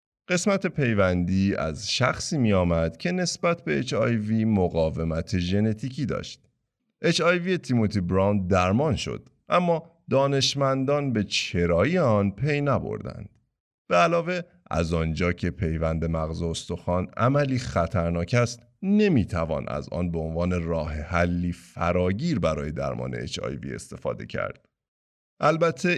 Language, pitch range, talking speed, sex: Persian, 85-135 Hz, 120 wpm, male